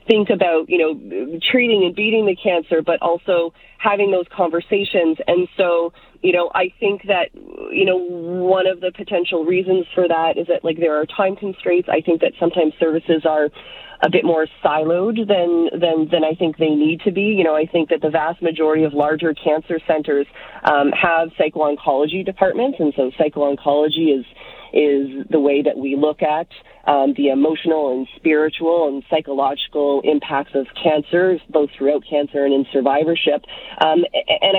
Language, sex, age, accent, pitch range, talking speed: English, female, 30-49, American, 150-175 Hz, 170 wpm